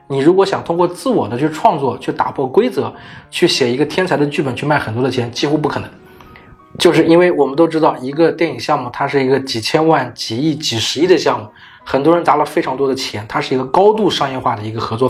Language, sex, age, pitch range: Chinese, male, 20-39, 130-160 Hz